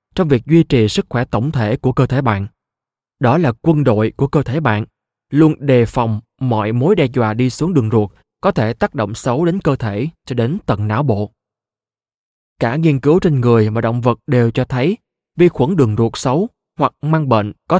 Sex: male